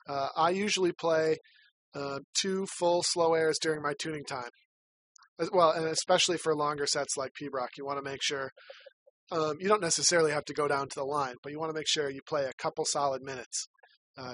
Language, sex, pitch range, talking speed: English, male, 135-165 Hz, 215 wpm